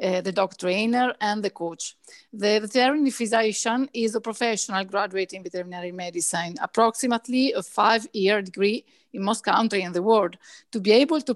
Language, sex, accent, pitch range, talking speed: Italian, female, native, 195-250 Hz, 165 wpm